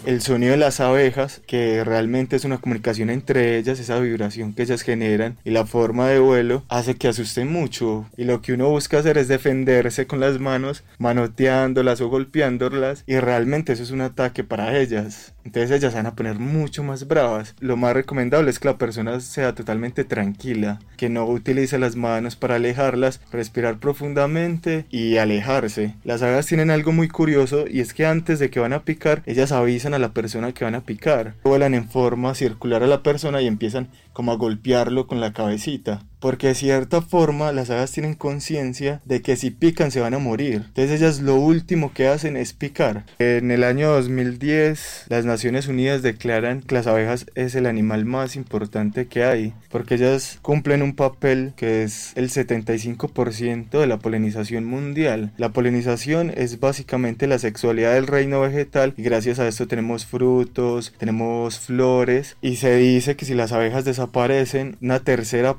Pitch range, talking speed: 115-135 Hz, 180 wpm